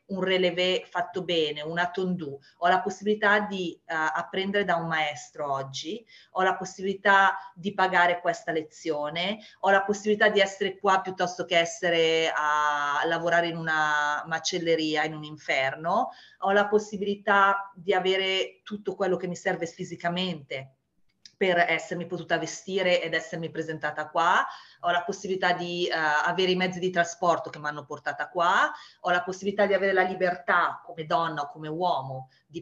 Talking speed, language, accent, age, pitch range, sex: 160 wpm, Italian, native, 30-49, 160-190 Hz, female